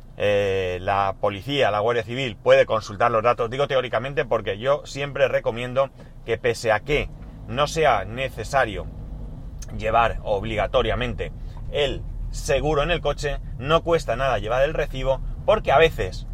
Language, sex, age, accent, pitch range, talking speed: Spanish, male, 30-49, Spanish, 120-155 Hz, 145 wpm